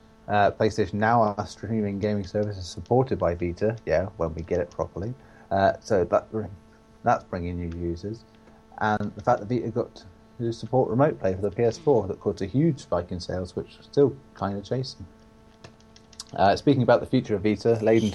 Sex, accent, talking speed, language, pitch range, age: male, British, 190 wpm, English, 95-115 Hz, 30-49